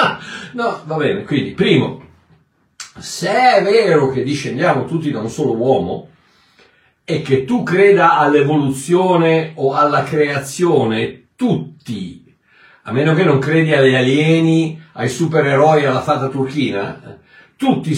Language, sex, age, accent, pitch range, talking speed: Italian, male, 60-79, native, 135-185 Hz, 125 wpm